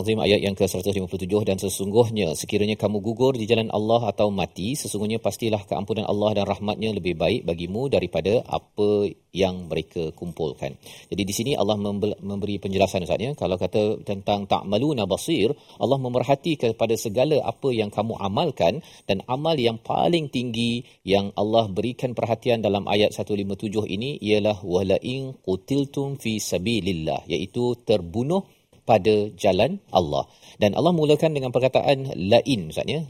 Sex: male